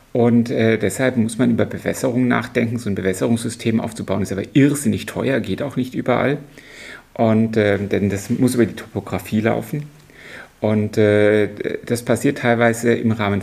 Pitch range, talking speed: 105-120 Hz, 160 wpm